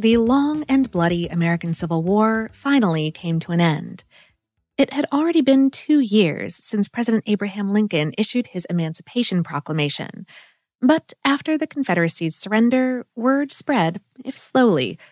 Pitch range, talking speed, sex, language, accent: 180-260 Hz, 140 wpm, female, English, American